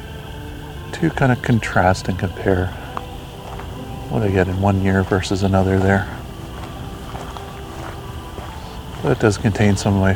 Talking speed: 125 wpm